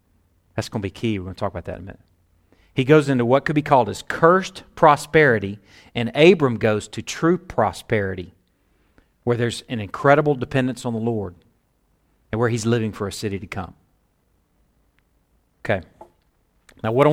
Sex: male